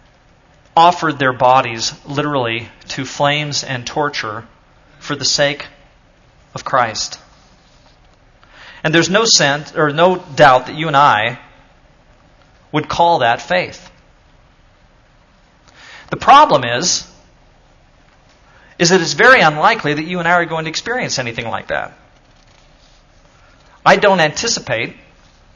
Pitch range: 145-185 Hz